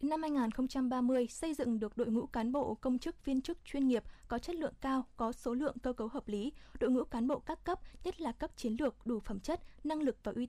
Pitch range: 225-275 Hz